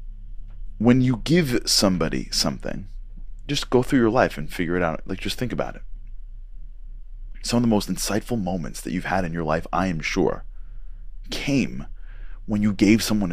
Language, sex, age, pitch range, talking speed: English, male, 30-49, 100-115 Hz, 175 wpm